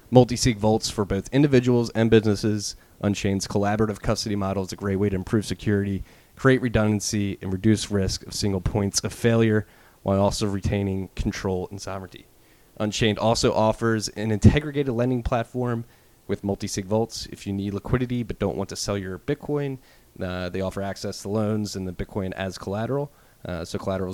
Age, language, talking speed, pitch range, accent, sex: 30-49, English, 175 wpm, 95-110 Hz, American, male